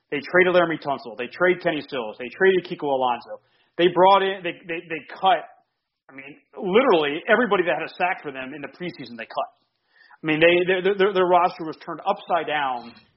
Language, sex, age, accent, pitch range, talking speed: English, male, 30-49, American, 135-180 Hz, 210 wpm